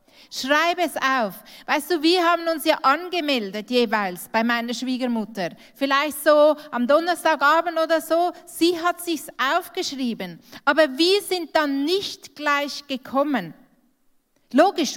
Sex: female